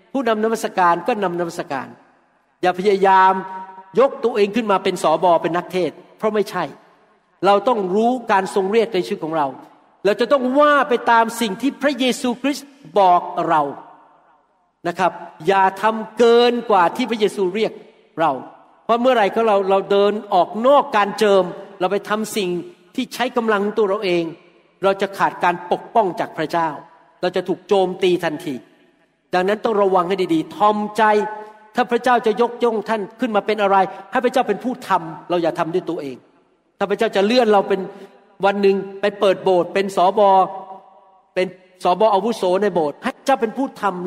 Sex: male